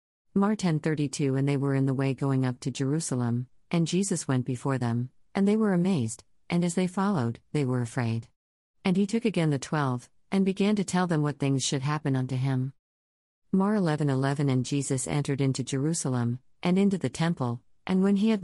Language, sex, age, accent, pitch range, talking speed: English, female, 50-69, American, 130-180 Hz, 200 wpm